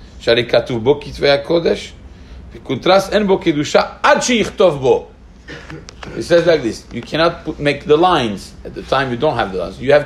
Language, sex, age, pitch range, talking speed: English, male, 40-59, 135-195 Hz, 120 wpm